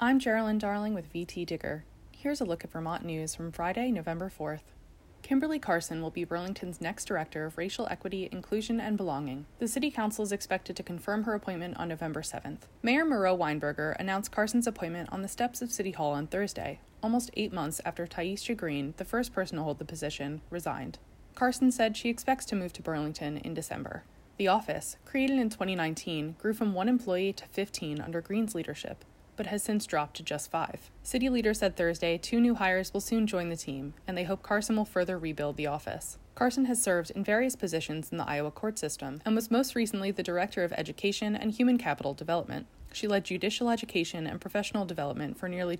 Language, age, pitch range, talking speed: English, 20-39, 165-215 Hz, 200 wpm